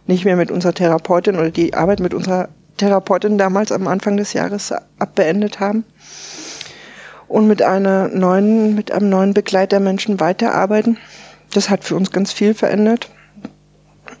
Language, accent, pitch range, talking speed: German, German, 170-195 Hz, 150 wpm